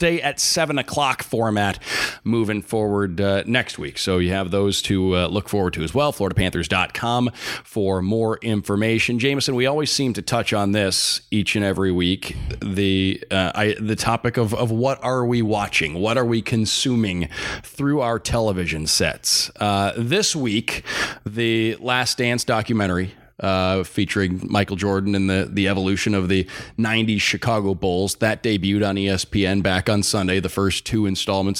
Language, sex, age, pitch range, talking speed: English, male, 30-49, 95-120 Hz, 165 wpm